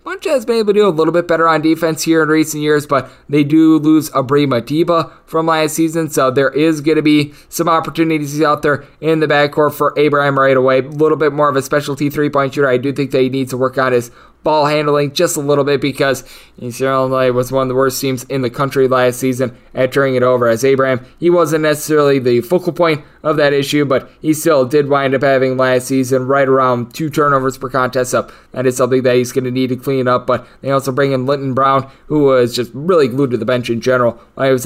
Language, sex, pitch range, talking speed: English, male, 130-150 Hz, 245 wpm